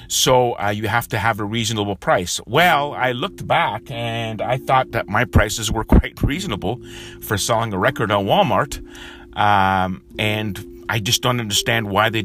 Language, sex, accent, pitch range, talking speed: English, male, American, 95-115 Hz, 175 wpm